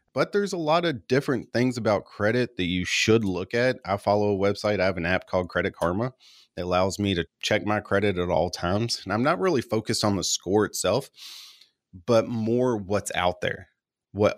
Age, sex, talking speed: 30-49, male, 210 wpm